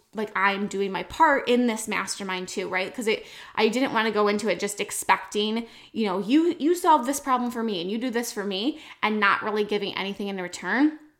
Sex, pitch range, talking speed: female, 195-235 Hz, 230 wpm